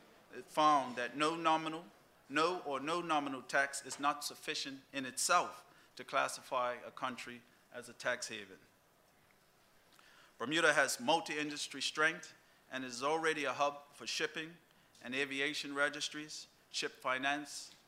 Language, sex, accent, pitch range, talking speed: English, male, American, 140-155 Hz, 130 wpm